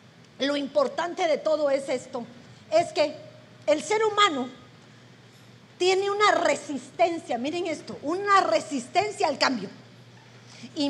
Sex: female